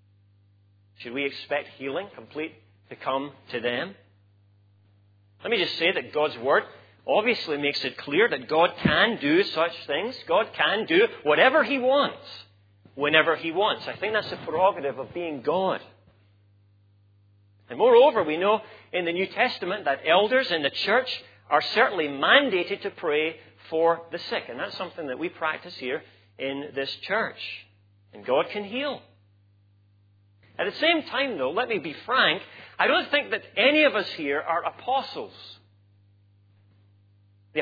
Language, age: English, 40-59